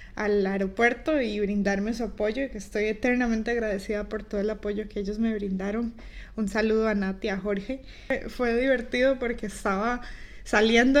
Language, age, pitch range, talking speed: Spanish, 20-39, 215-255 Hz, 165 wpm